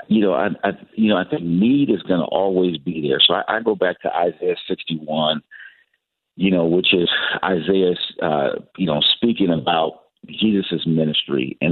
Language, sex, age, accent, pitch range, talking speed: English, male, 50-69, American, 85-100 Hz, 185 wpm